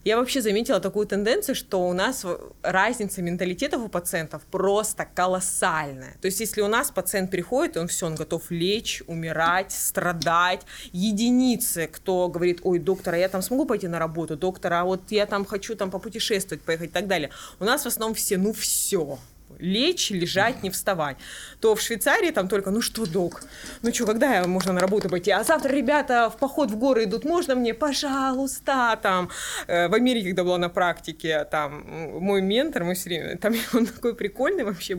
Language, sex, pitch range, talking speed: Russian, female, 175-240 Hz, 185 wpm